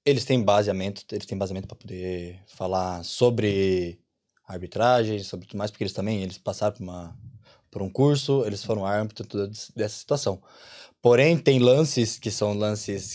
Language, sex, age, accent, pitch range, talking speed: Portuguese, male, 20-39, Brazilian, 110-135 Hz, 160 wpm